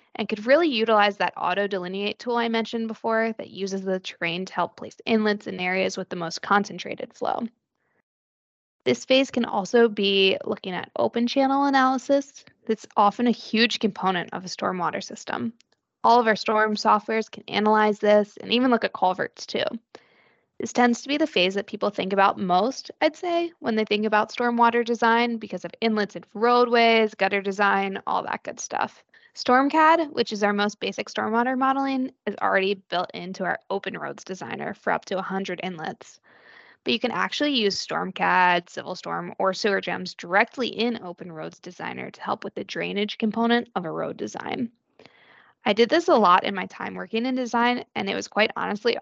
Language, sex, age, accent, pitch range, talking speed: English, female, 20-39, American, 195-240 Hz, 185 wpm